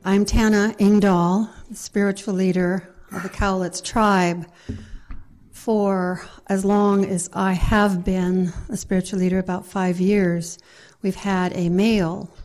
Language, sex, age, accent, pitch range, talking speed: English, female, 60-79, American, 175-195 Hz, 130 wpm